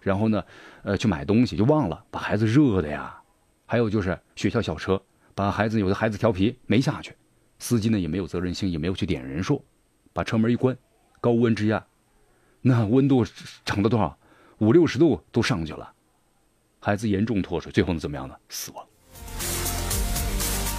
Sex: male